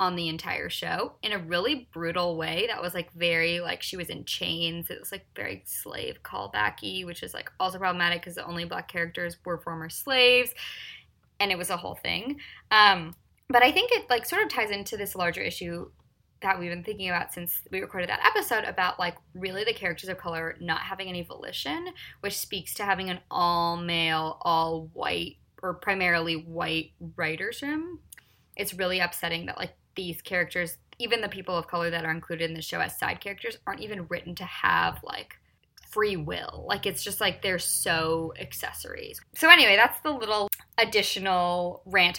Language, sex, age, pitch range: English, female, 20-39, 170-205 Hz